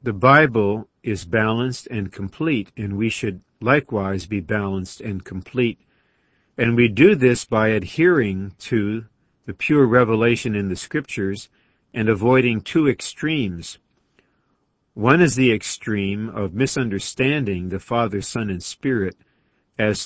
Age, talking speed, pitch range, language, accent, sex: 50-69, 130 wpm, 100-130 Hz, English, American, male